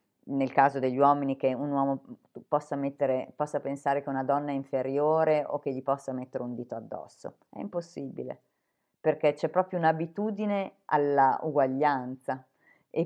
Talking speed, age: 150 wpm, 30-49